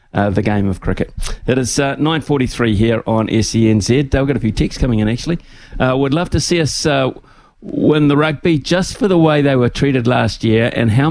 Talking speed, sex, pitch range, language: 225 wpm, male, 115-135 Hz, English